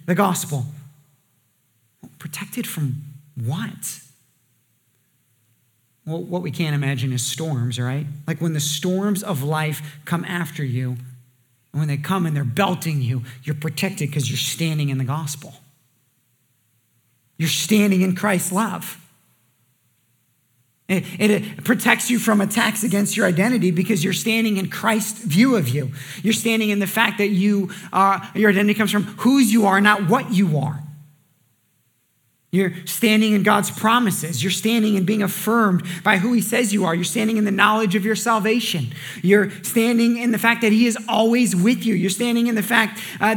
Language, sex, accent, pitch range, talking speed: English, male, American, 150-225 Hz, 165 wpm